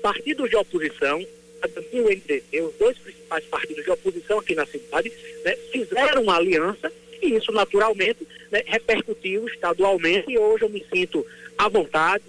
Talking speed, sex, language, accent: 150 wpm, male, Portuguese, Brazilian